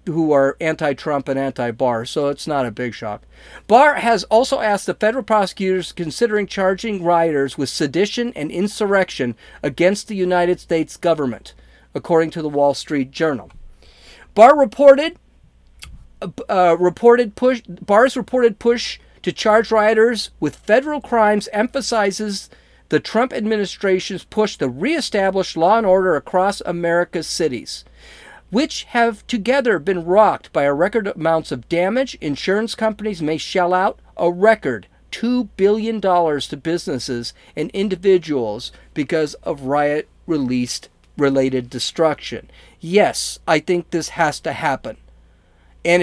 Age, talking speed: 40-59, 135 wpm